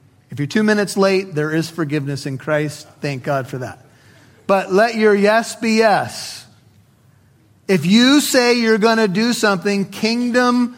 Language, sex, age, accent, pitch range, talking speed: English, male, 40-59, American, 135-195 Hz, 160 wpm